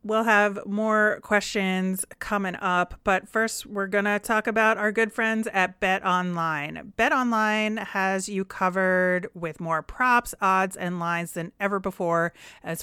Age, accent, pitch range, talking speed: 30-49, American, 170-205 Hz, 160 wpm